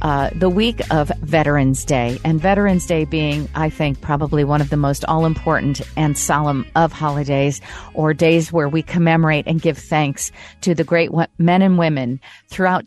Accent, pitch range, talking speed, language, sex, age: American, 150-175 Hz, 175 wpm, English, female, 40-59